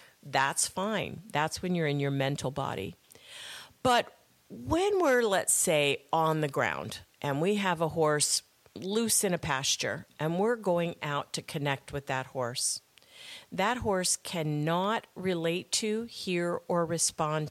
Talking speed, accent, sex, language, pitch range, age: 145 wpm, American, female, English, 140-185 Hz, 50-69